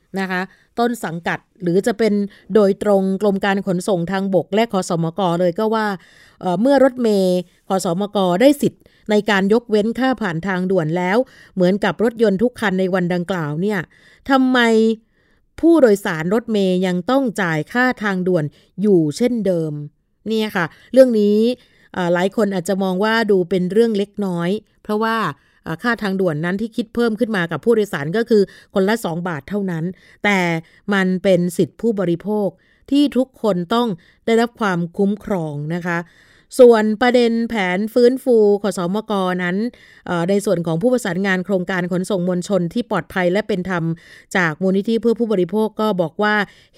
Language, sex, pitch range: Thai, female, 180-220 Hz